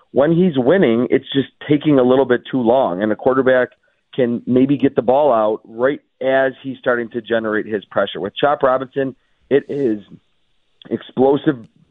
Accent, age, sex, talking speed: American, 40-59, male, 170 wpm